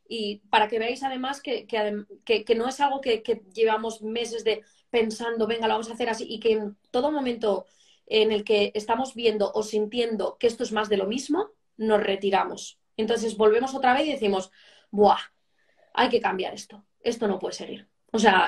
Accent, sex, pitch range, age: Spanish, female, 210-245 Hz, 20-39